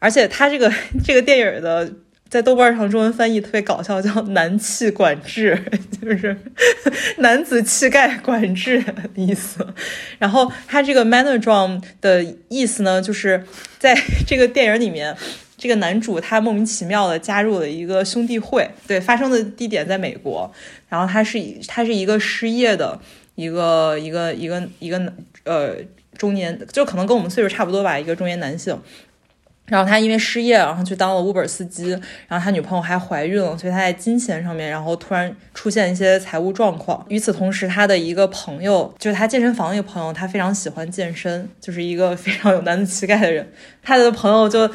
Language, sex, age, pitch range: Chinese, female, 20-39, 185-230 Hz